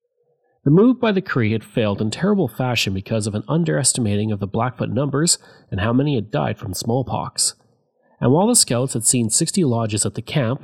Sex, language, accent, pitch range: male, English, Canadian, 110-160 Hz